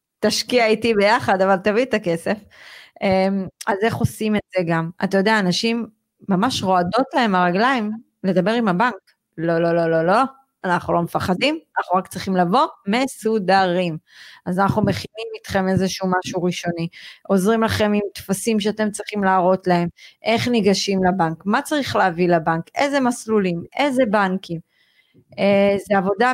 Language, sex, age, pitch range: Hebrew, female, 30-49, 190-235 Hz